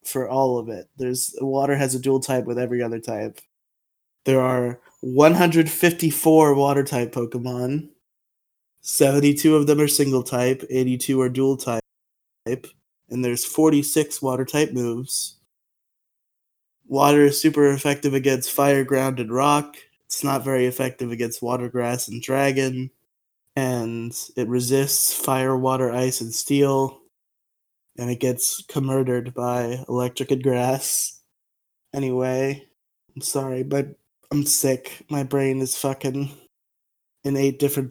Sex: male